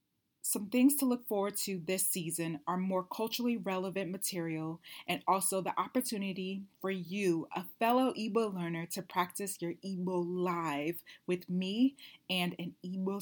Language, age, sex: English, 20-39, female